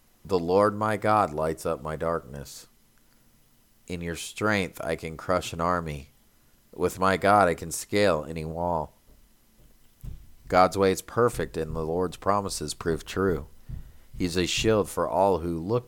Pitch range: 80-105 Hz